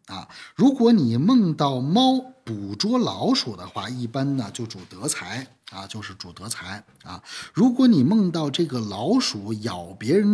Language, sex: Chinese, male